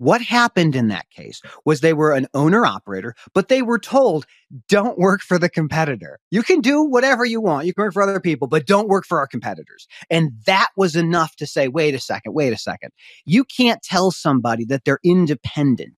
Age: 30-49